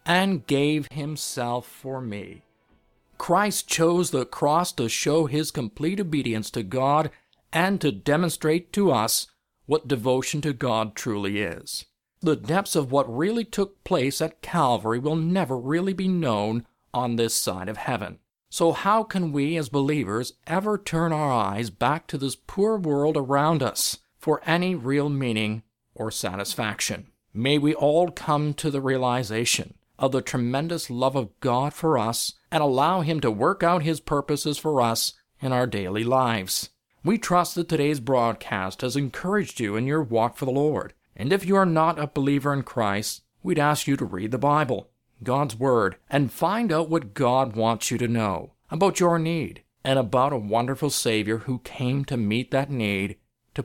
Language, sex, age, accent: English, male, 50-69, American